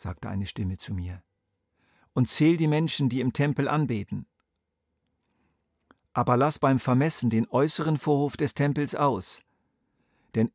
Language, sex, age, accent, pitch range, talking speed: German, male, 50-69, German, 100-135 Hz, 135 wpm